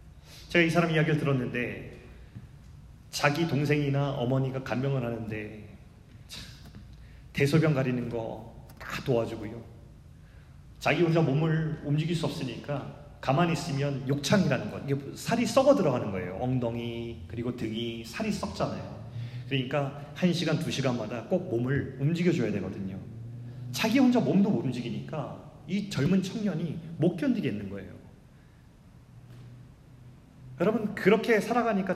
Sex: male